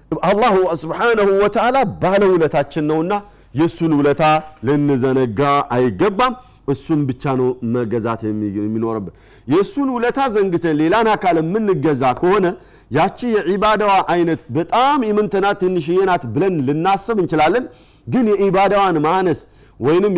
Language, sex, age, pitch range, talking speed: Amharic, male, 50-69, 135-190 Hz, 85 wpm